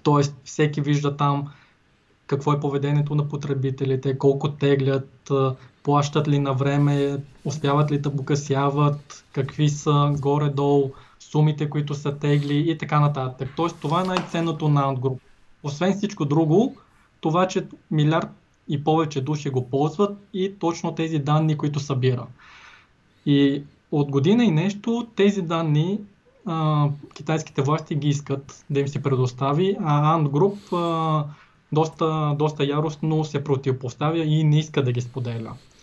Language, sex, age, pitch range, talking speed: English, male, 20-39, 140-155 Hz, 135 wpm